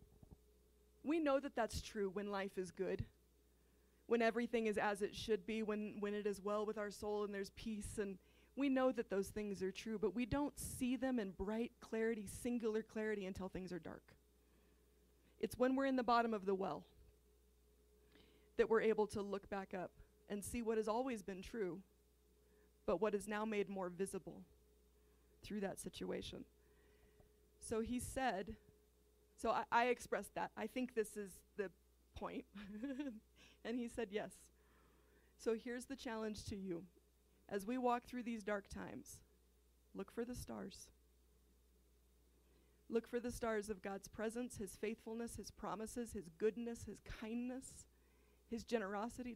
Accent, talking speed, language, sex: American, 160 wpm, English, female